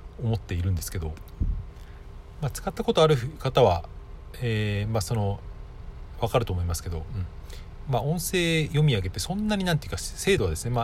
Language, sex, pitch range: Japanese, male, 80-120 Hz